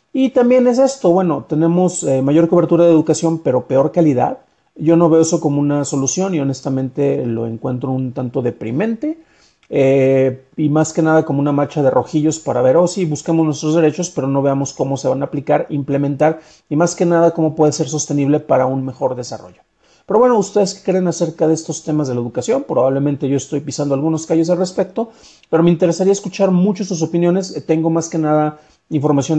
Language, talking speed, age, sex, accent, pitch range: Spanish, 200 wpm, 40-59, male, Mexican, 135-170 Hz